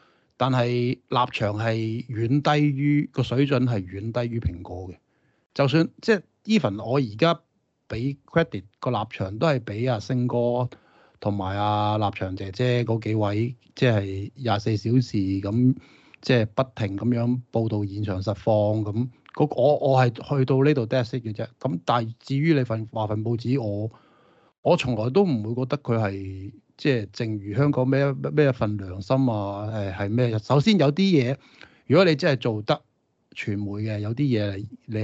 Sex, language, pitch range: male, Chinese, 105-130 Hz